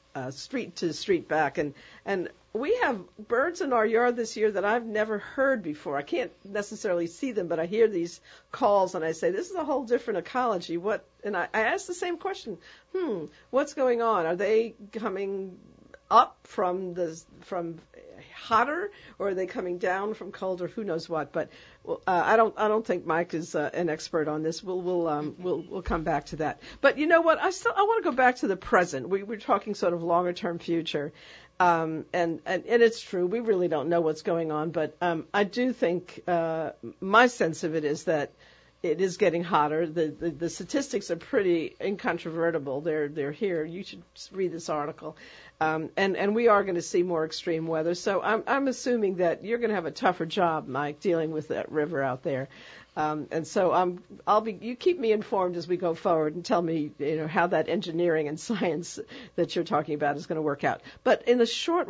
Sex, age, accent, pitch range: female, 50-69, American, 165-225 Hz